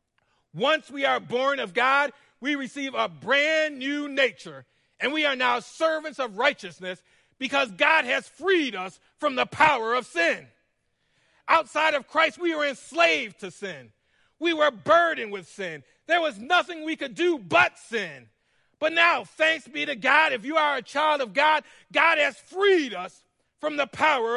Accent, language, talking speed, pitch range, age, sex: American, English, 170 wpm, 220-305 Hz, 40-59, male